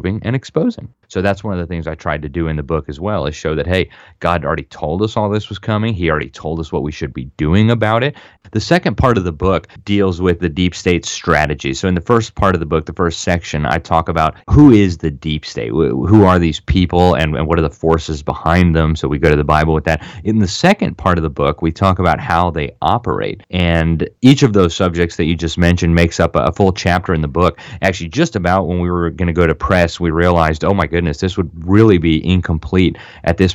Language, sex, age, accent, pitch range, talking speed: English, male, 30-49, American, 80-95 Hz, 255 wpm